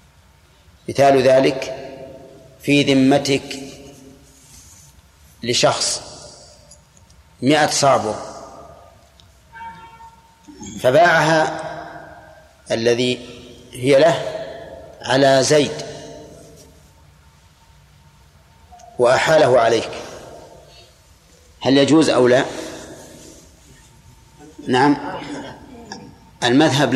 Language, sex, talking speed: Arabic, male, 45 wpm